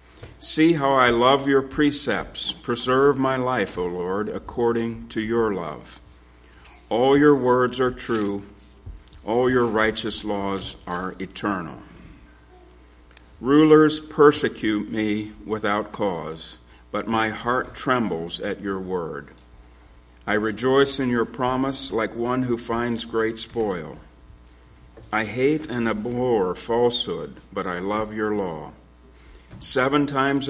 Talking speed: 120 wpm